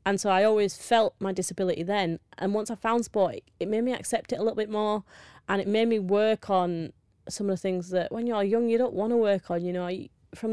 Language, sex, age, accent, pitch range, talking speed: English, female, 30-49, British, 180-210 Hz, 255 wpm